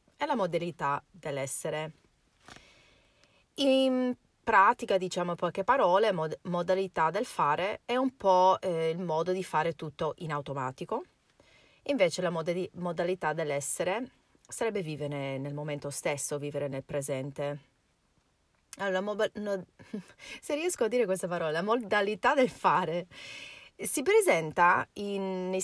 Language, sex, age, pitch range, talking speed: Italian, female, 30-49, 155-215 Hz, 125 wpm